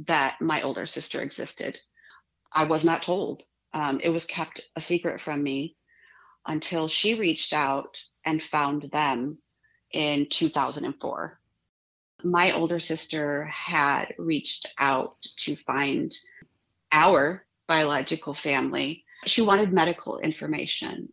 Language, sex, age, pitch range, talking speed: English, female, 30-49, 150-175 Hz, 115 wpm